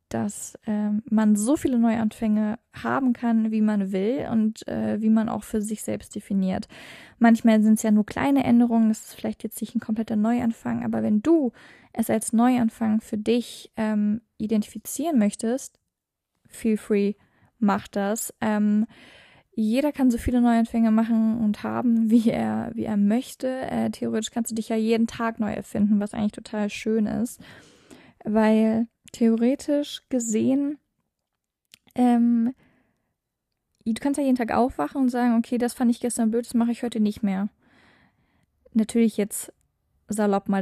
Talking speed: 155 wpm